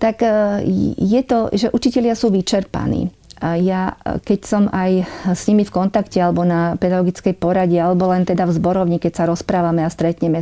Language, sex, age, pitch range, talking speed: Slovak, female, 40-59, 170-195 Hz, 175 wpm